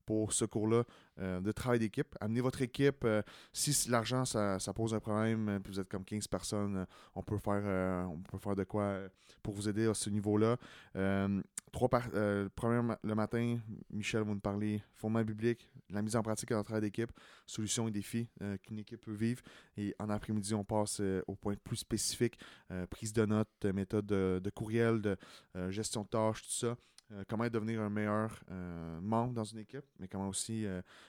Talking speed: 210 wpm